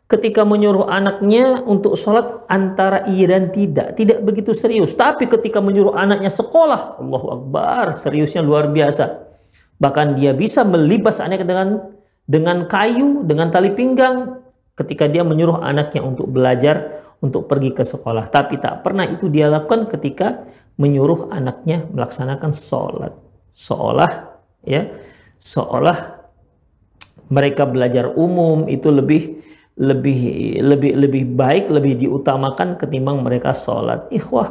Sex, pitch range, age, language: male, 140-210 Hz, 40-59, Indonesian